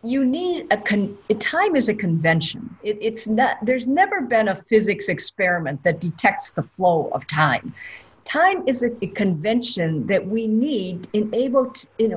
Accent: American